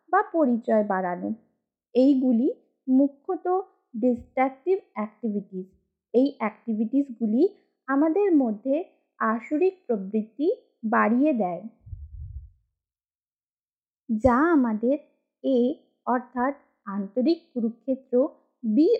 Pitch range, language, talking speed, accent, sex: 225-295 Hz, Bengali, 45 wpm, native, female